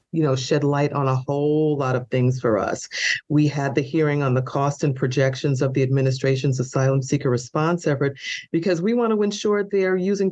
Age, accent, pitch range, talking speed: 40-59, American, 140-190 Hz, 205 wpm